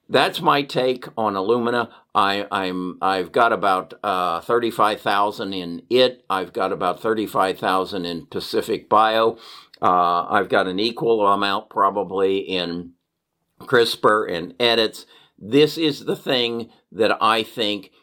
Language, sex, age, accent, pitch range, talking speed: English, male, 50-69, American, 95-120 Hz, 130 wpm